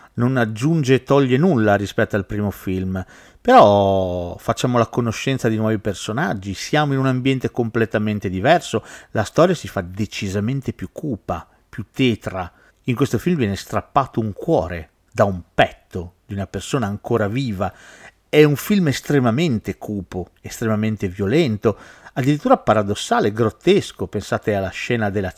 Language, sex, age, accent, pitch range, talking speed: Italian, male, 50-69, native, 105-140 Hz, 140 wpm